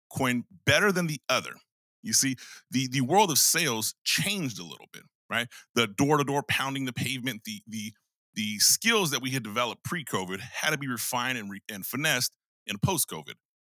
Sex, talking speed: male, 180 wpm